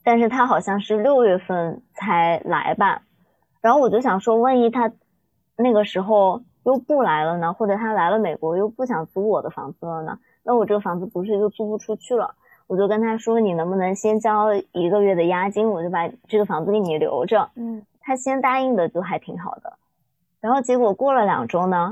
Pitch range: 185-230 Hz